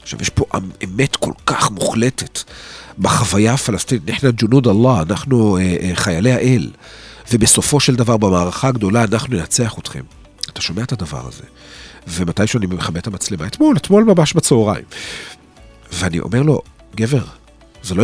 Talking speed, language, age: 145 wpm, Hebrew, 40-59